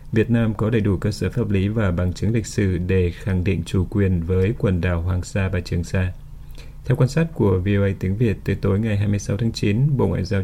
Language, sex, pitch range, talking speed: Vietnamese, male, 95-120 Hz, 245 wpm